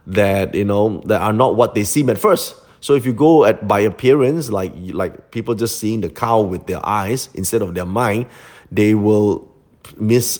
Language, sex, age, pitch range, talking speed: English, male, 30-49, 100-120 Hz, 200 wpm